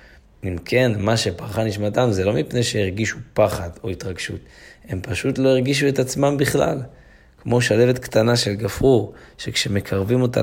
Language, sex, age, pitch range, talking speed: Hebrew, male, 20-39, 95-120 Hz, 150 wpm